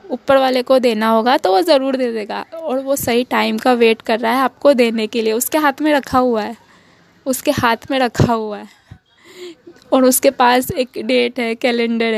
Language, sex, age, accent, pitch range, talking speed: Hindi, female, 10-29, native, 235-285 Hz, 205 wpm